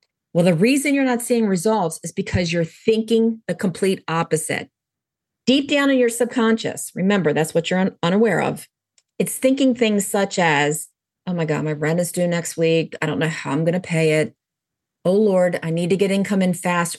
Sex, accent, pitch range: female, American, 165-220 Hz